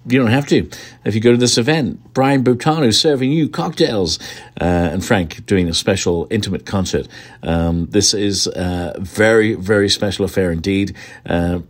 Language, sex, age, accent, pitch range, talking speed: English, male, 50-69, British, 90-120 Hz, 170 wpm